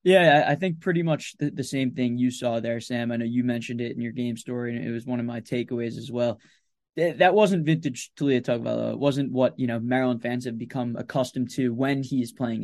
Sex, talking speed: male, 235 wpm